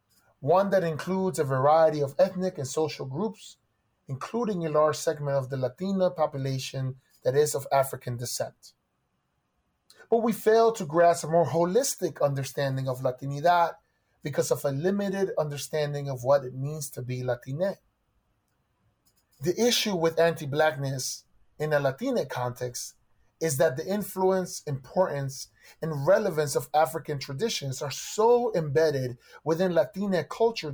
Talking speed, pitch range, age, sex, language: 135 wpm, 135-175 Hz, 30-49, male, English